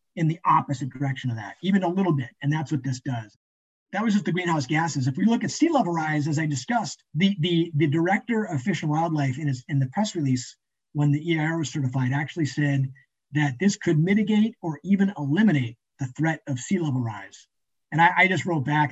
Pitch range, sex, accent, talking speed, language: 135-170 Hz, male, American, 225 wpm, English